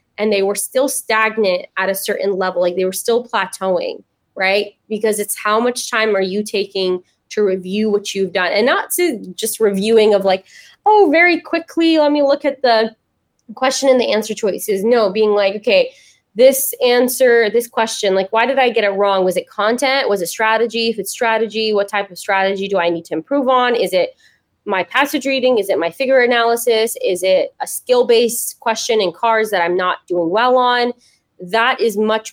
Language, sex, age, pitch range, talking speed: English, female, 20-39, 195-250 Hz, 200 wpm